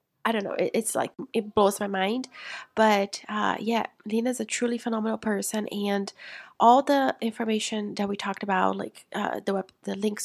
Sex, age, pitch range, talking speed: female, 20-39, 195-220 Hz, 185 wpm